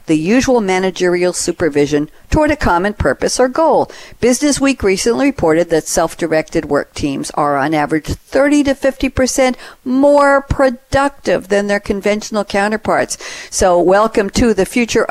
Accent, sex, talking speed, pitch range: American, female, 145 wpm, 165-230 Hz